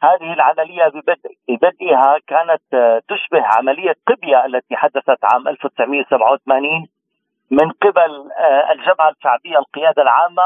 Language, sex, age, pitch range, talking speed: Arabic, male, 40-59, 145-200 Hz, 105 wpm